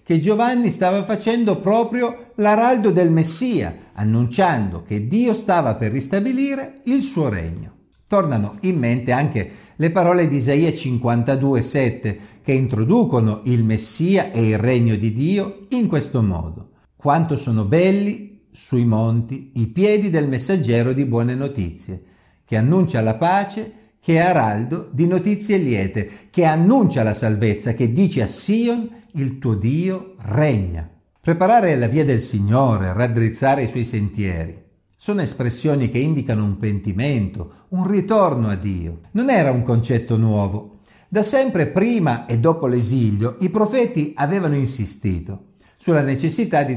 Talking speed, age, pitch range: 140 wpm, 50-69, 110-185 Hz